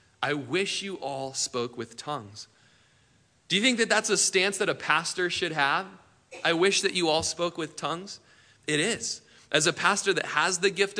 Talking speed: 195 wpm